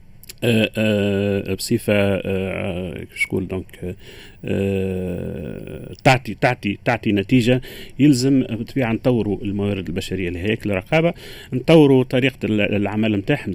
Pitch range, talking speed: 100-130 Hz, 130 wpm